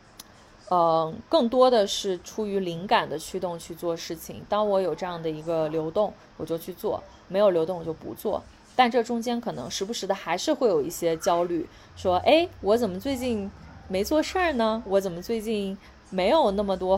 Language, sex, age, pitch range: Chinese, female, 20-39, 170-230 Hz